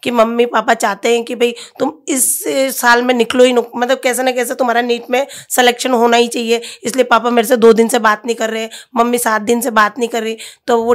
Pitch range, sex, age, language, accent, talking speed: 235-260 Hz, female, 20-39, Hindi, native, 250 wpm